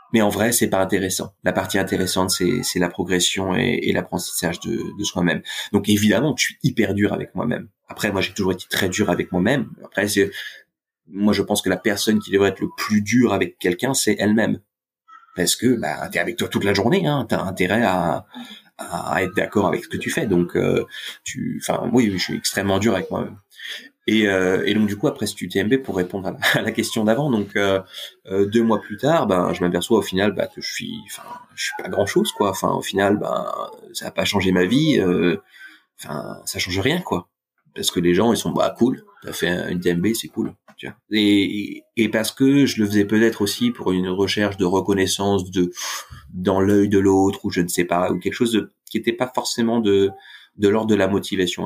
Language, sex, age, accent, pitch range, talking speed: French, male, 30-49, French, 95-110 Hz, 230 wpm